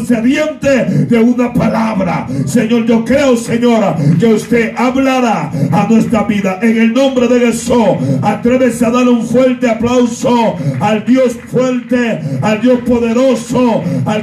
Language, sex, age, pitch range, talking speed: Spanish, male, 60-79, 215-250 Hz, 130 wpm